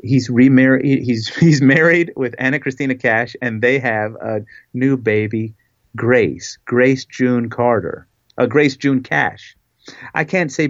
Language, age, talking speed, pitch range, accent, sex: English, 40-59, 145 wpm, 110-135 Hz, American, male